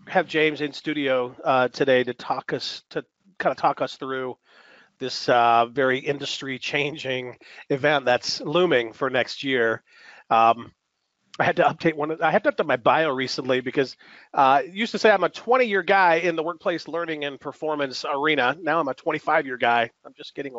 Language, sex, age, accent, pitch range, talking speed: English, male, 40-59, American, 120-160 Hz, 180 wpm